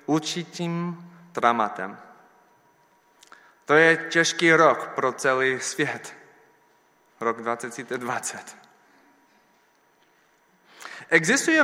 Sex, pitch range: male, 135-190 Hz